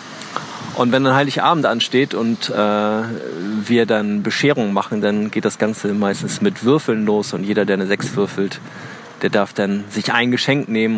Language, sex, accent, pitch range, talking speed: German, male, German, 105-135 Hz, 175 wpm